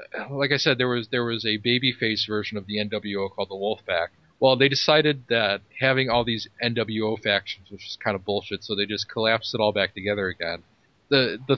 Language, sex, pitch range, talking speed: English, male, 100-125 Hz, 210 wpm